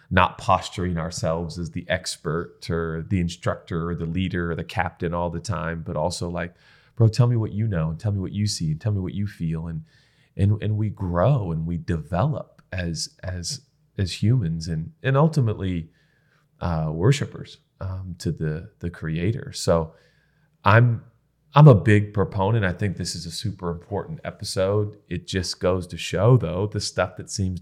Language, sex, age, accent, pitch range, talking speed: English, male, 30-49, American, 85-130 Hz, 185 wpm